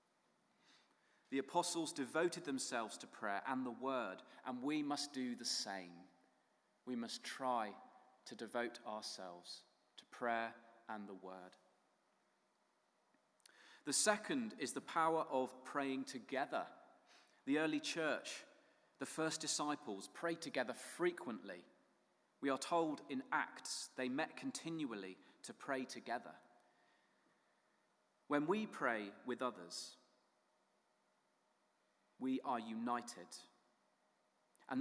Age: 30-49